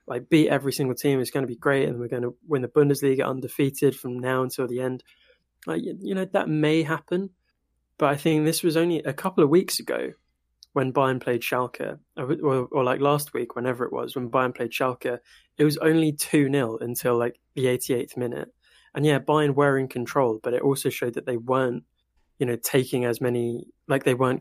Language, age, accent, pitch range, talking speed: English, 20-39, British, 120-145 Hz, 220 wpm